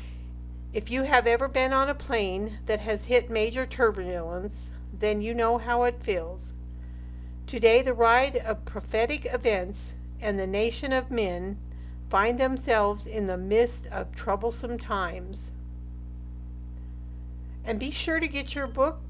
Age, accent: 50-69, American